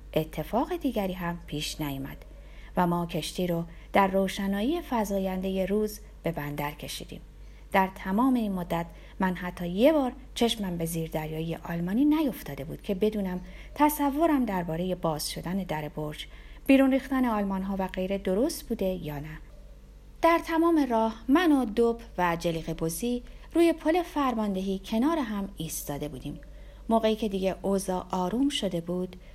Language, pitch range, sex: Persian, 170-250 Hz, female